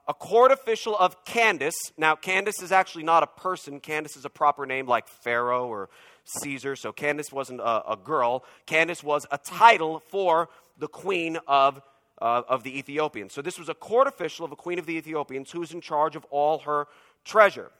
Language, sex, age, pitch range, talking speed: English, male, 40-59, 145-190 Hz, 200 wpm